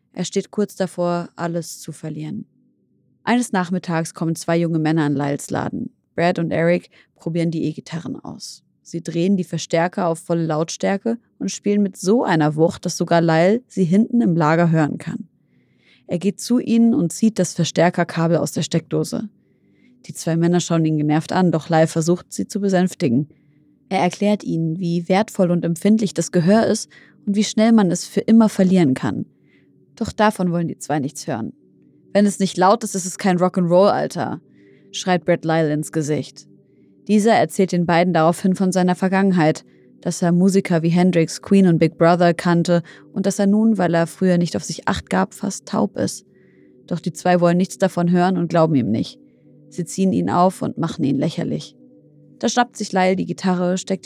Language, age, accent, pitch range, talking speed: German, 30-49, German, 165-195 Hz, 190 wpm